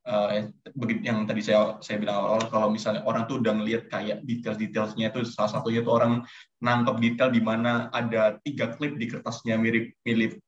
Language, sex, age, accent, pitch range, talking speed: Indonesian, male, 20-39, native, 110-120 Hz, 180 wpm